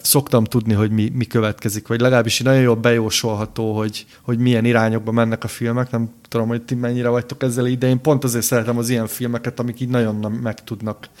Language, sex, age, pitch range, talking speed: Hungarian, male, 30-49, 110-125 Hz, 210 wpm